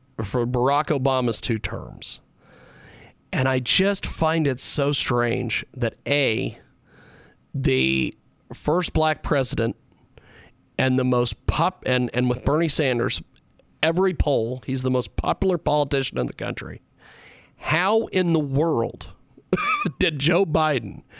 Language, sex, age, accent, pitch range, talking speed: English, male, 40-59, American, 130-200 Hz, 125 wpm